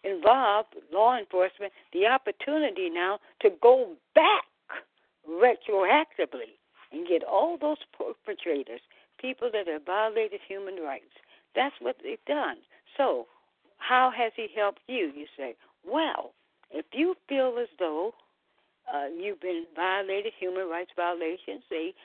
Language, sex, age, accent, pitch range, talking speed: English, female, 60-79, American, 170-280 Hz, 130 wpm